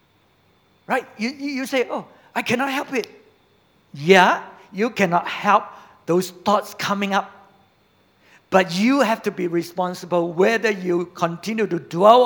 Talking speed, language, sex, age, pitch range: 135 wpm, English, male, 50-69, 180-265 Hz